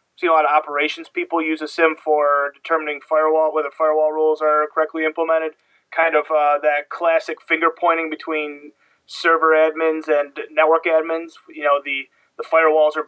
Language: English